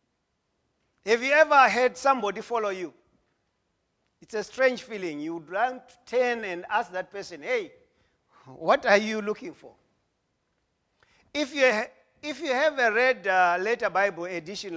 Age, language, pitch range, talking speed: 40-59, English, 185-260 Hz, 150 wpm